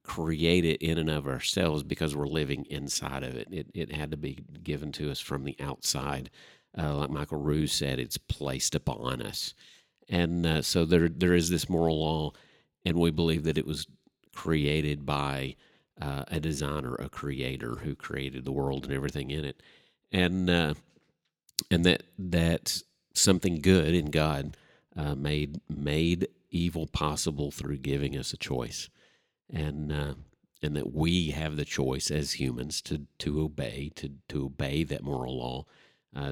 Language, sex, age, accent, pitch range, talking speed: English, male, 50-69, American, 70-80 Hz, 165 wpm